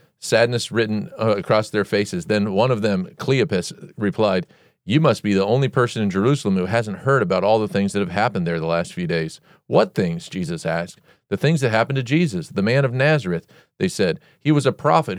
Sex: male